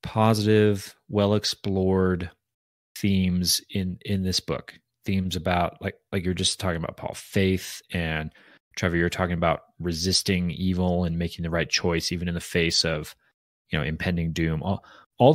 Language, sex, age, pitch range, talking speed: English, male, 30-49, 90-115 Hz, 160 wpm